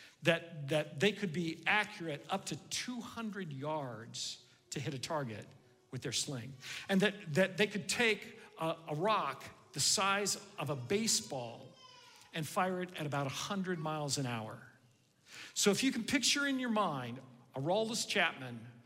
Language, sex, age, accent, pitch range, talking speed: English, male, 50-69, American, 130-190 Hz, 160 wpm